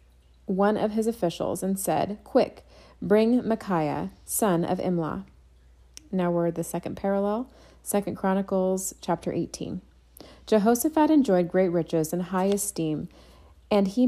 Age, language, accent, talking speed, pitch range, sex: 30-49, English, American, 130 wpm, 165-205 Hz, female